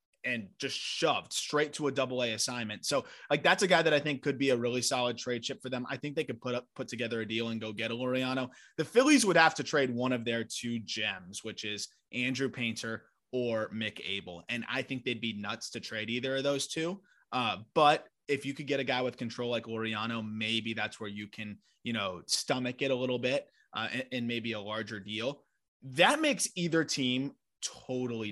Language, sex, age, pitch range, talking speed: English, male, 20-39, 115-145 Hz, 225 wpm